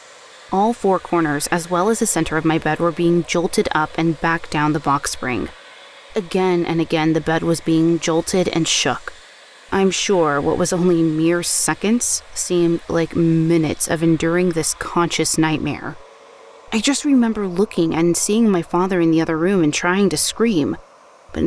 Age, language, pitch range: 20-39, English, 160-190 Hz